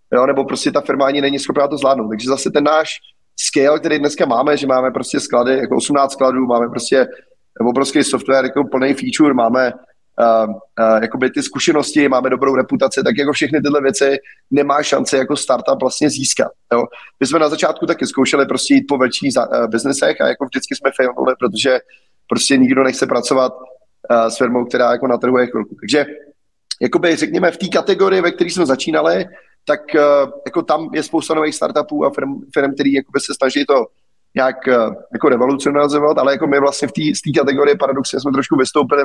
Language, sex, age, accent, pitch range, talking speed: Czech, male, 30-49, native, 130-155 Hz, 190 wpm